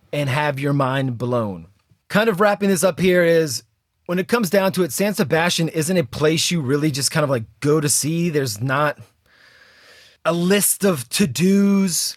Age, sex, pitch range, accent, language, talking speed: 30-49, male, 135-170 Hz, American, English, 185 wpm